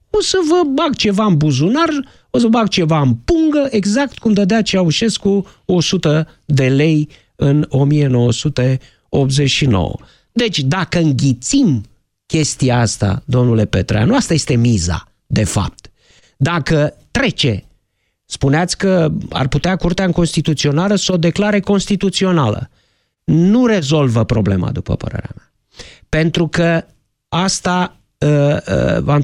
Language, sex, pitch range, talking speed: Romanian, male, 145-205 Hz, 125 wpm